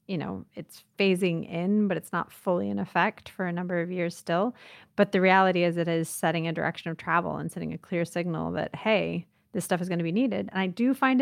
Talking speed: 245 wpm